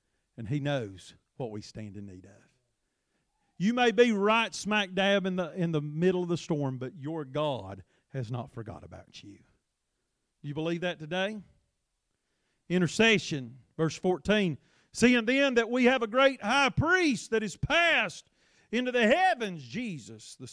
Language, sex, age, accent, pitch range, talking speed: English, male, 40-59, American, 145-240 Hz, 165 wpm